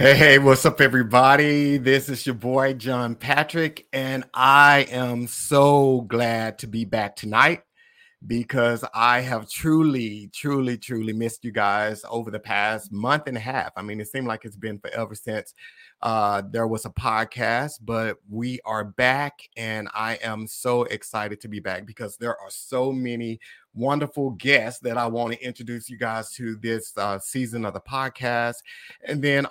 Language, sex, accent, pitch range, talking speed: English, male, American, 110-135 Hz, 170 wpm